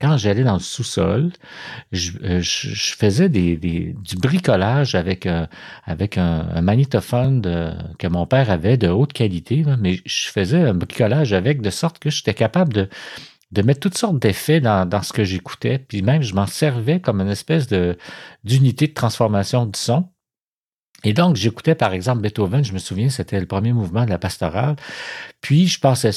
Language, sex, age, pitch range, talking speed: French, male, 50-69, 95-135 Hz, 175 wpm